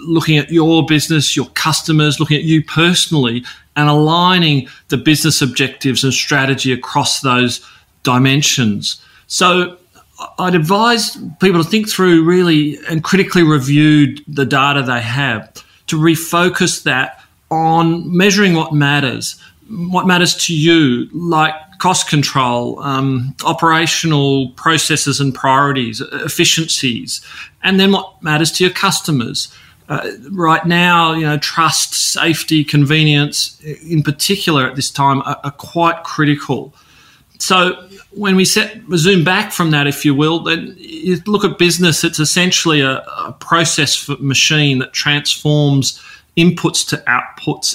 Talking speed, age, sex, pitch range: 135 wpm, 30-49, male, 140-170 Hz